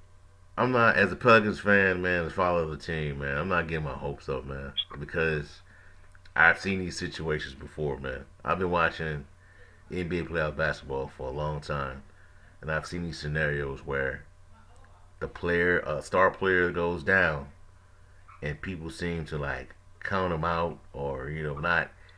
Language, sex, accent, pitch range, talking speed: English, male, American, 75-90 Hz, 170 wpm